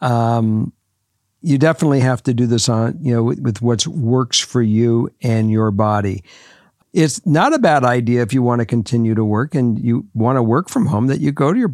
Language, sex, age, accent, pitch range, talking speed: English, male, 60-79, American, 120-150 Hz, 220 wpm